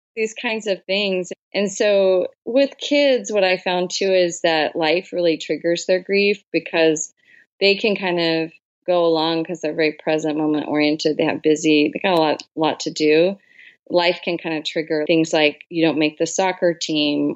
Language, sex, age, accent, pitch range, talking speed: English, female, 30-49, American, 160-195 Hz, 190 wpm